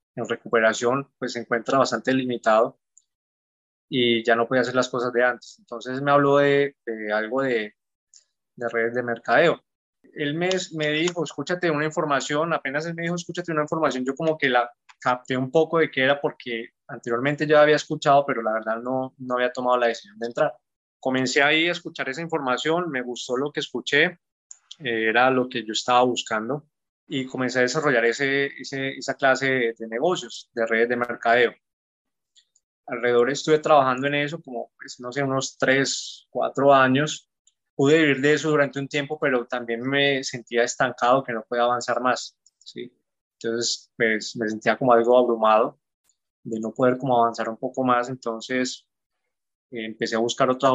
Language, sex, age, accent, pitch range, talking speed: Spanish, male, 20-39, Colombian, 120-145 Hz, 175 wpm